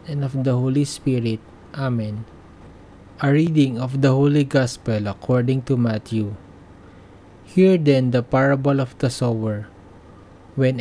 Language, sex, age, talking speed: English, male, 20-39, 130 wpm